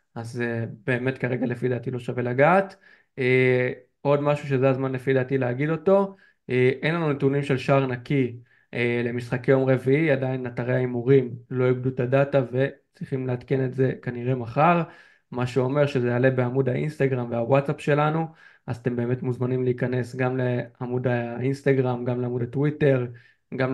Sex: male